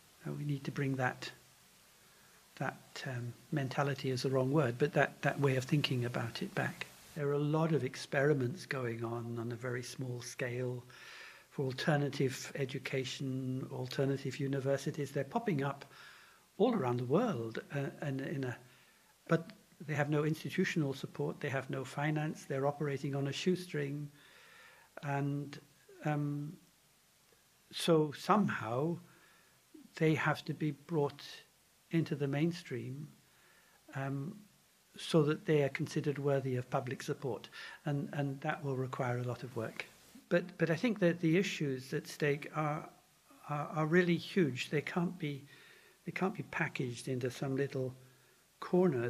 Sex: male